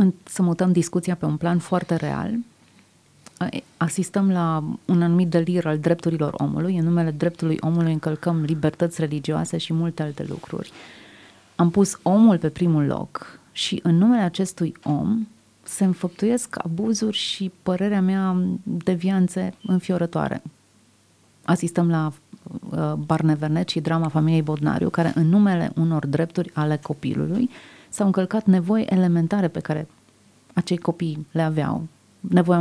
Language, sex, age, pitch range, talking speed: Romanian, female, 30-49, 160-185 Hz, 130 wpm